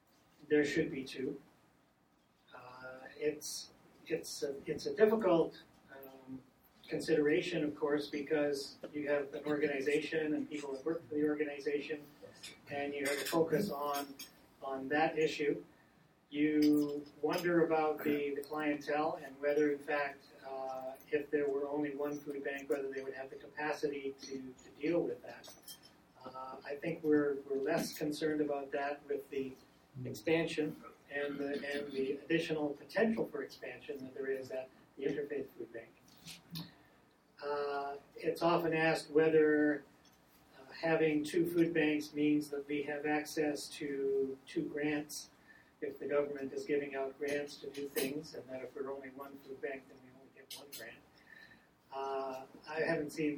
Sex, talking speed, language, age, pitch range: male, 155 wpm, English, 40-59, 135-150 Hz